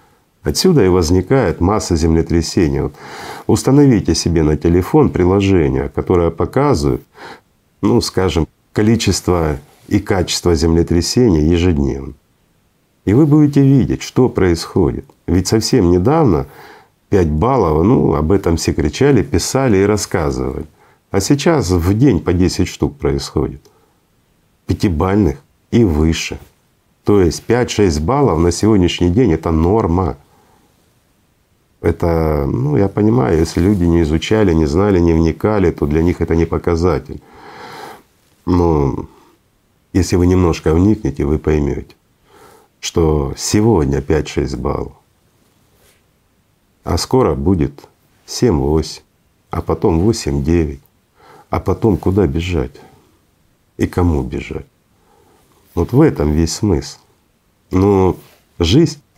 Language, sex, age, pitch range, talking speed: Russian, male, 50-69, 80-100 Hz, 110 wpm